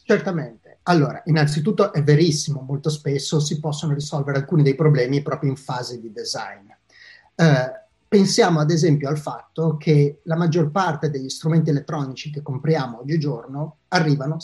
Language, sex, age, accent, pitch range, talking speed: Italian, male, 30-49, native, 150-200 Hz, 145 wpm